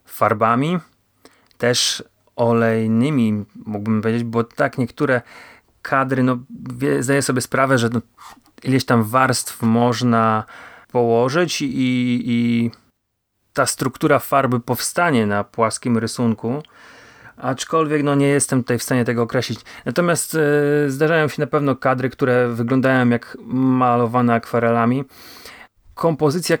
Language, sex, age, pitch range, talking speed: Polish, male, 30-49, 115-135 Hz, 105 wpm